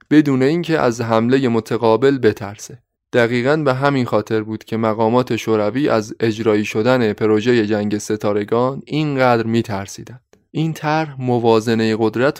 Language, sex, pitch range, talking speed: Persian, male, 115-140 Hz, 125 wpm